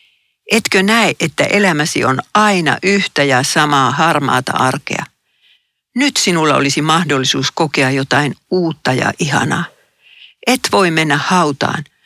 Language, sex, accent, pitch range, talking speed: Finnish, female, native, 145-185 Hz, 120 wpm